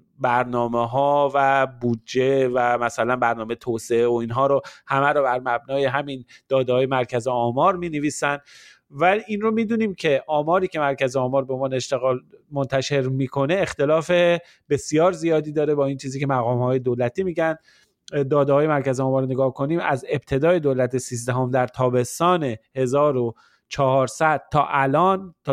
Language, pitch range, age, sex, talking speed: Persian, 125-155 Hz, 30-49, male, 150 wpm